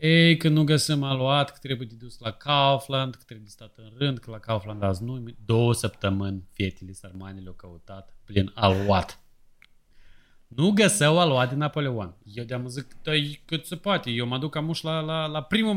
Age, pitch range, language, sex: 30-49, 110-150 Hz, Romanian, male